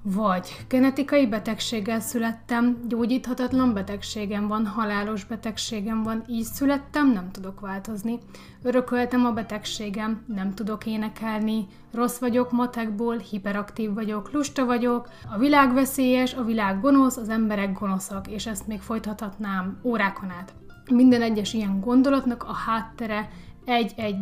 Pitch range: 200-245 Hz